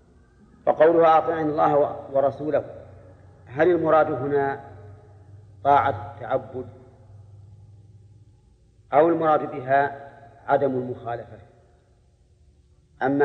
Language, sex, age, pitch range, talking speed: Arabic, male, 40-59, 120-145 Hz, 70 wpm